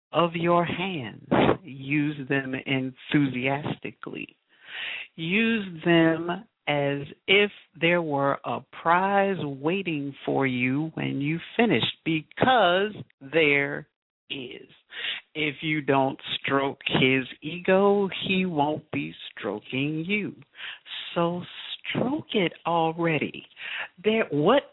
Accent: American